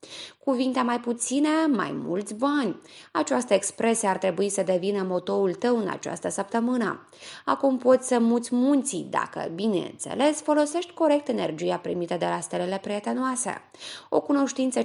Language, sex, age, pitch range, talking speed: Romanian, female, 20-39, 200-290 Hz, 135 wpm